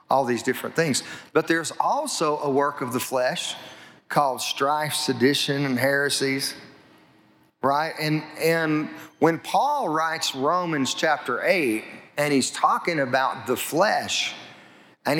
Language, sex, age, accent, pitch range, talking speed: English, male, 40-59, American, 135-165 Hz, 130 wpm